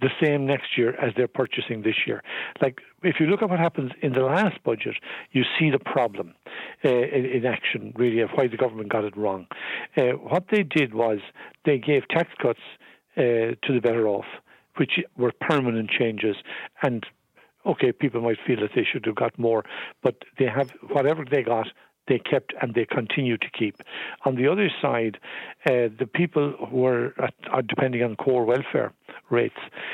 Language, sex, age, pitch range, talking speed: English, male, 60-79, 120-145 Hz, 190 wpm